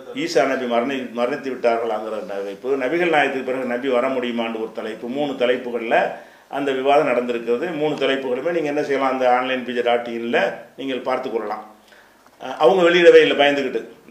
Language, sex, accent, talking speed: Tamil, male, native, 140 wpm